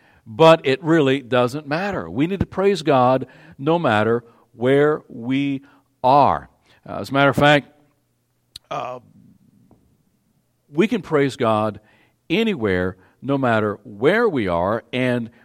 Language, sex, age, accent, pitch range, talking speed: English, male, 60-79, American, 110-150 Hz, 130 wpm